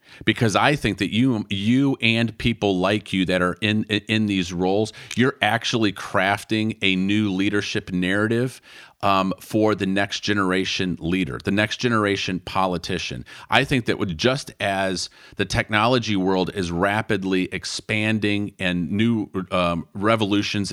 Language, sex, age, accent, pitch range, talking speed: English, male, 40-59, American, 95-110 Hz, 140 wpm